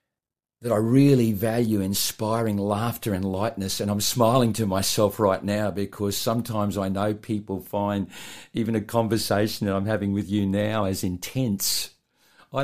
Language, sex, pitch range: English, male, 95-110 Hz